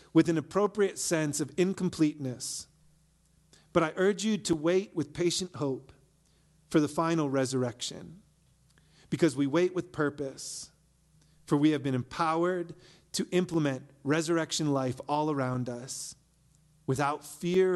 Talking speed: 130 wpm